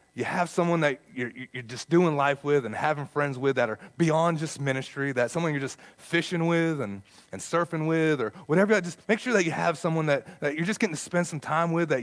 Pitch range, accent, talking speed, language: 115-165 Hz, American, 245 wpm, English